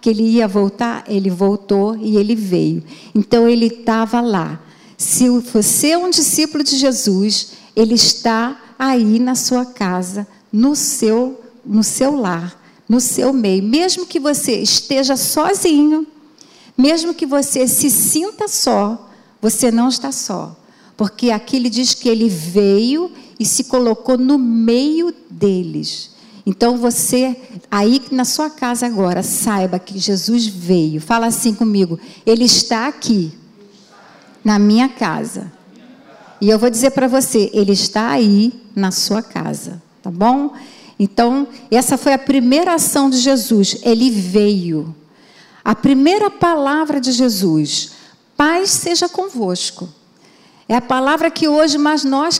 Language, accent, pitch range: Portuguese, Brazilian, 205-270 Hz